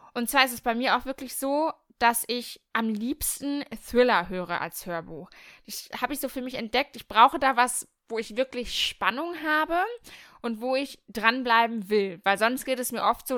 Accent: German